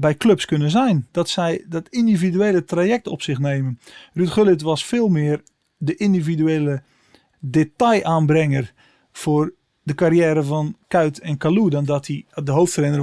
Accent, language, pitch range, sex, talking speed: Dutch, Dutch, 150-180 Hz, male, 145 wpm